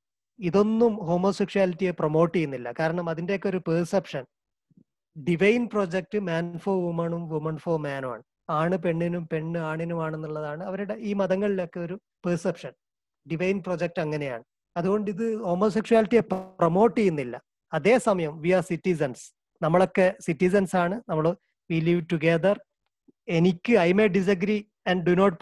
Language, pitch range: Malayalam, 165-200 Hz